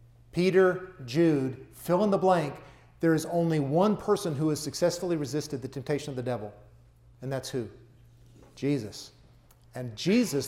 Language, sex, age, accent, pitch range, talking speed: English, male, 40-59, American, 120-170 Hz, 130 wpm